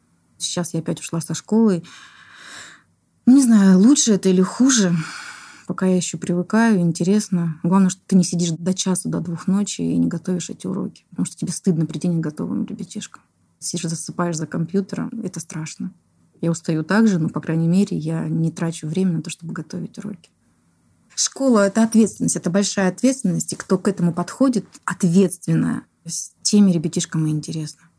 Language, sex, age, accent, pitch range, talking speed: Russian, female, 20-39, native, 165-200 Hz, 170 wpm